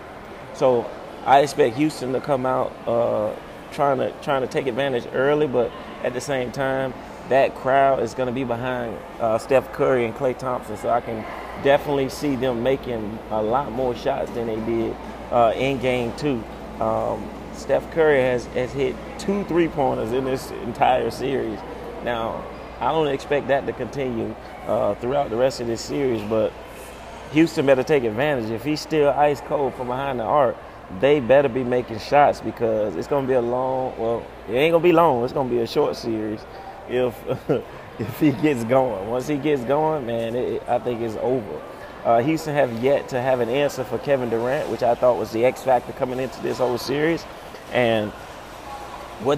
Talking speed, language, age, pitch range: 190 wpm, English, 30-49, 120-145 Hz